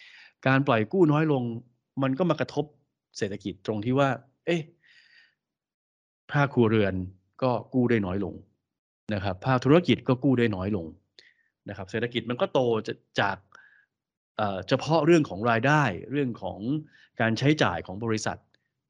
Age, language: 20-39, Thai